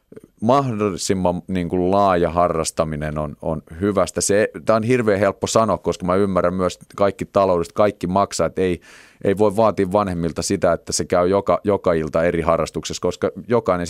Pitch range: 85-100 Hz